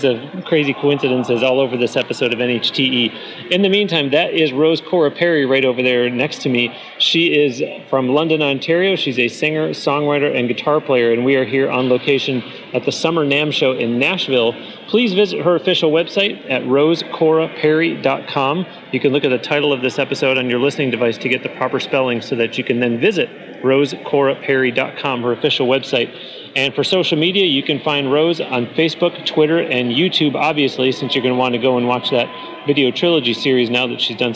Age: 30-49